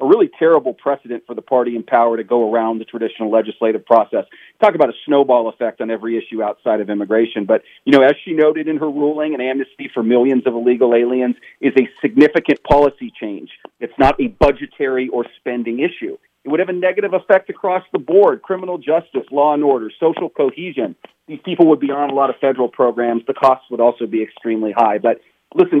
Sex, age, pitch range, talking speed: male, 40-59, 120-165 Hz, 210 wpm